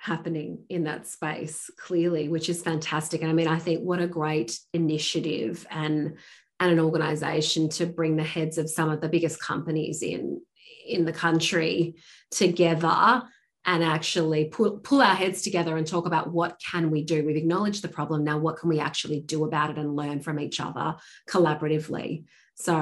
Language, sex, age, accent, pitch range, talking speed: English, female, 30-49, Australian, 155-180 Hz, 180 wpm